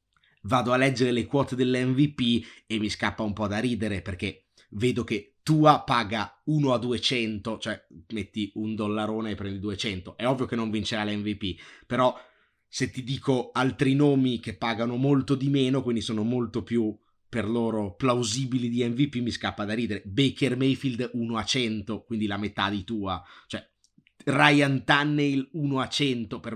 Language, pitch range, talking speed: Italian, 110-135 Hz, 170 wpm